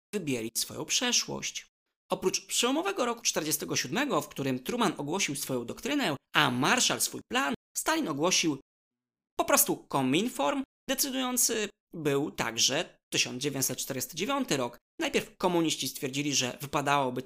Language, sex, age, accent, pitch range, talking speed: Polish, male, 20-39, native, 130-215 Hz, 110 wpm